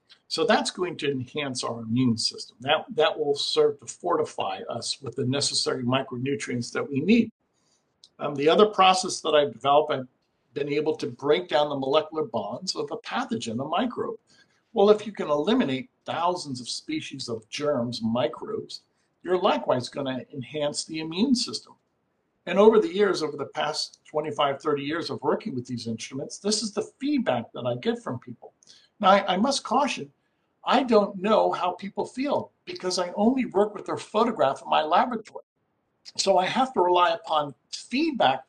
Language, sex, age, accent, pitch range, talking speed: English, male, 60-79, American, 140-210 Hz, 180 wpm